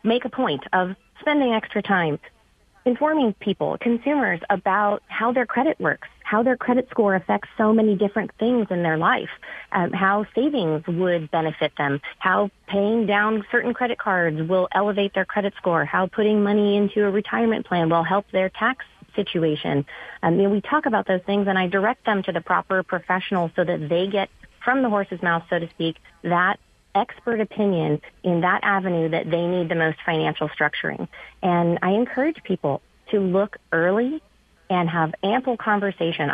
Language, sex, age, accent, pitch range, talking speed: English, female, 30-49, American, 170-220 Hz, 175 wpm